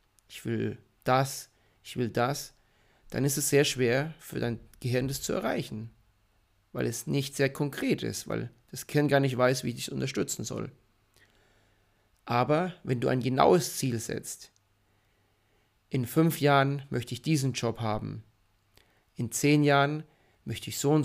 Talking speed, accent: 160 wpm, German